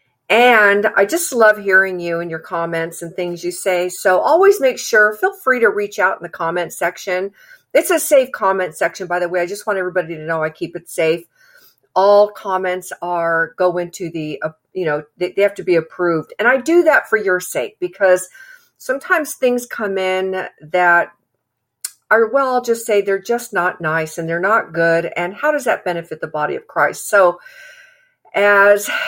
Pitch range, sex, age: 180-250 Hz, female, 50-69